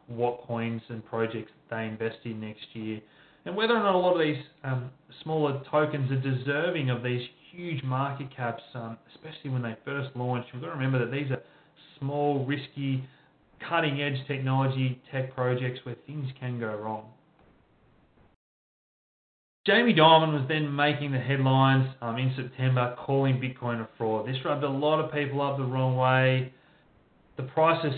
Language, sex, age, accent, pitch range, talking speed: English, male, 30-49, Australian, 125-150 Hz, 170 wpm